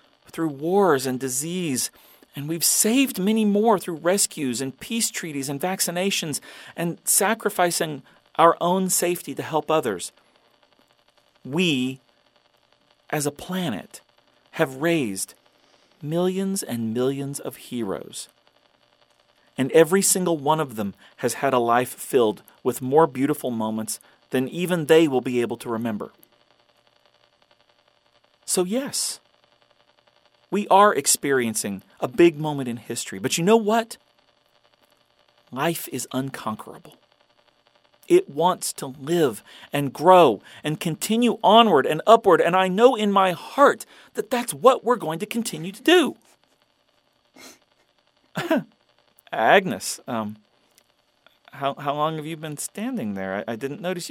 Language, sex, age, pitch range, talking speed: English, male, 40-59, 130-195 Hz, 130 wpm